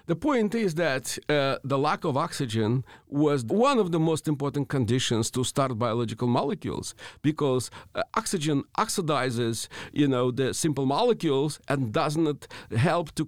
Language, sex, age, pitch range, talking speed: English, male, 50-69, 130-165 Hz, 150 wpm